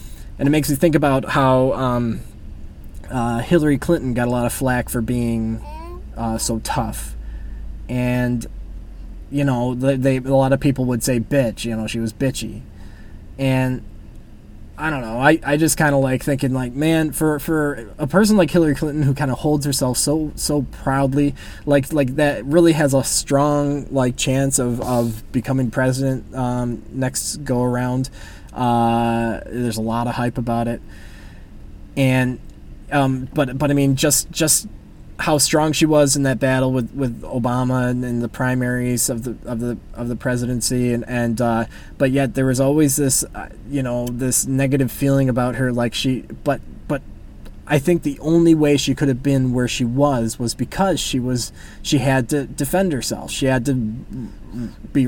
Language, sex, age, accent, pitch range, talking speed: English, male, 20-39, American, 120-145 Hz, 180 wpm